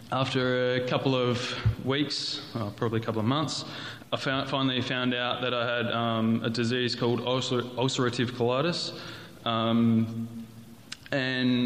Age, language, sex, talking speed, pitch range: 20-39, English, male, 130 wpm, 115-130 Hz